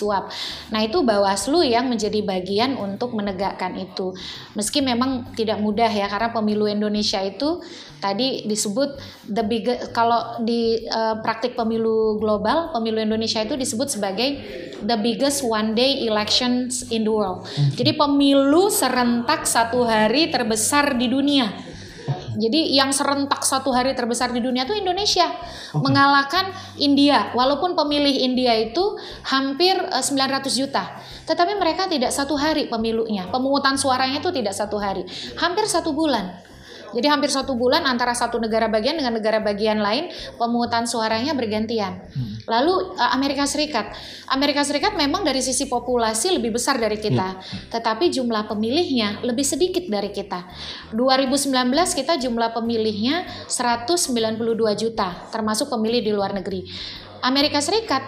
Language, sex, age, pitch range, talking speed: Indonesian, female, 20-39, 215-280 Hz, 135 wpm